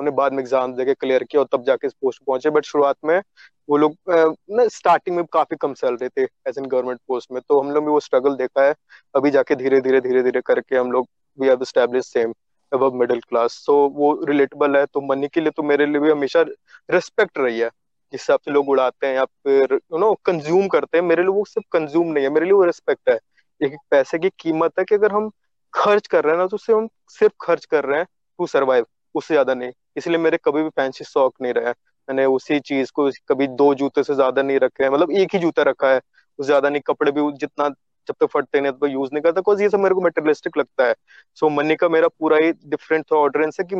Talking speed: 200 wpm